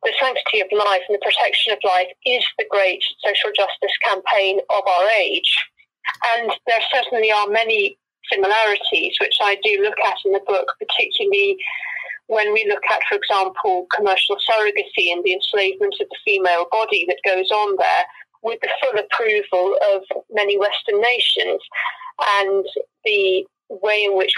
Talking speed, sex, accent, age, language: 160 wpm, female, British, 30-49, English